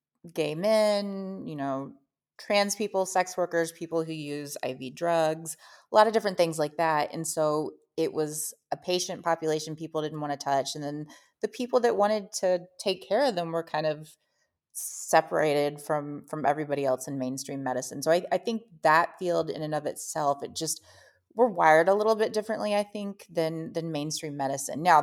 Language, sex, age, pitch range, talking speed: English, female, 30-49, 145-180 Hz, 190 wpm